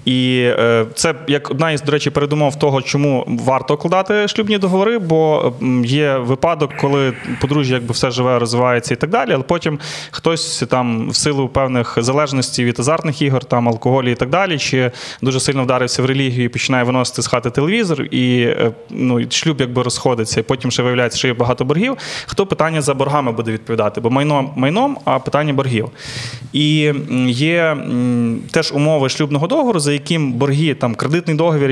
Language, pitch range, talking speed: Ukrainian, 125-150 Hz, 170 wpm